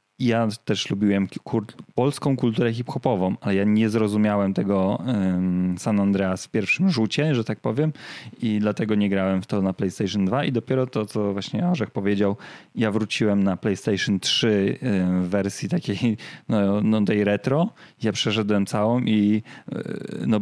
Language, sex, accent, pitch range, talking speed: Polish, male, native, 100-115 Hz, 150 wpm